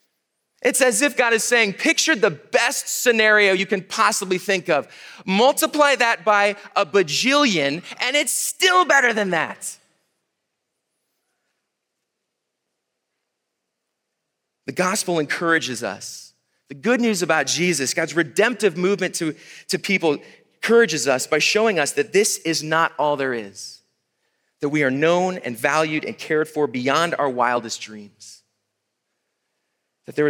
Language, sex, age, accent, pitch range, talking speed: English, male, 30-49, American, 125-190 Hz, 135 wpm